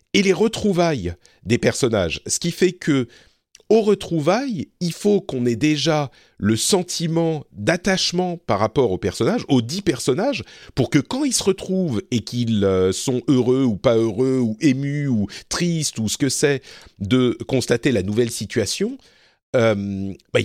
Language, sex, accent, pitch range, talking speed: French, male, French, 115-180 Hz, 160 wpm